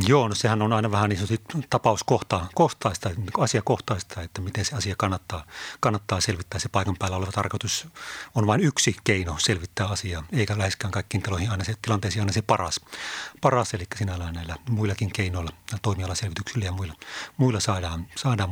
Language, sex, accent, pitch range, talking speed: Finnish, male, native, 95-115 Hz, 170 wpm